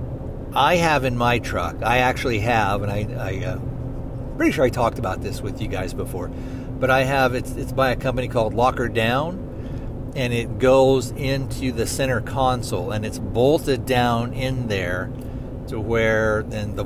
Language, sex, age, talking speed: English, male, 50-69, 180 wpm